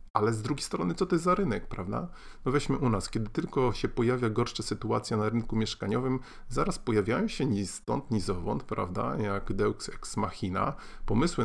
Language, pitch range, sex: Polish, 100-125 Hz, male